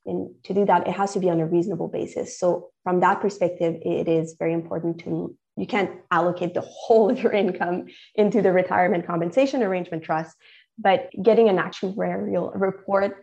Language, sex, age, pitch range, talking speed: English, female, 20-39, 170-200 Hz, 180 wpm